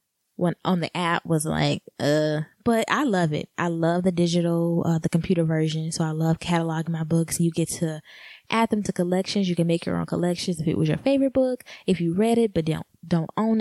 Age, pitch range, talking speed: 20-39, 165-200 Hz, 230 wpm